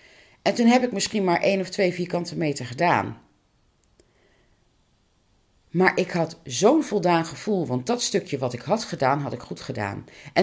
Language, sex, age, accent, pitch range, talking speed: Dutch, female, 40-59, Dutch, 165-235 Hz, 175 wpm